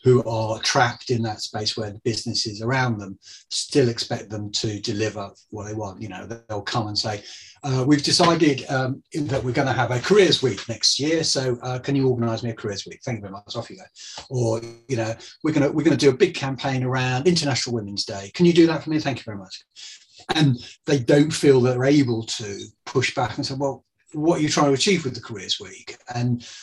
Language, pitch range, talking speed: English, 110-145 Hz, 230 wpm